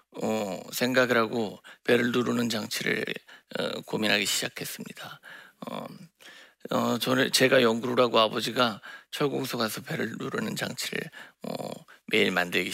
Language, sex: Korean, male